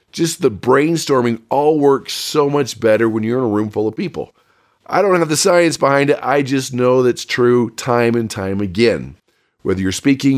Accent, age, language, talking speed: American, 40-59, English, 200 wpm